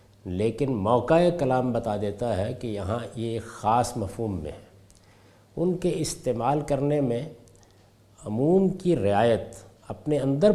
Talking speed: 135 wpm